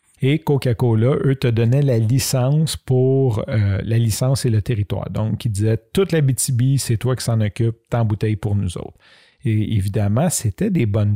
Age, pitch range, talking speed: 40-59, 115-145 Hz, 195 wpm